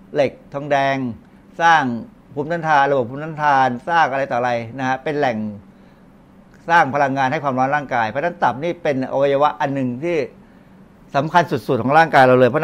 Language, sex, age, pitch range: Thai, male, 60-79, 130-175 Hz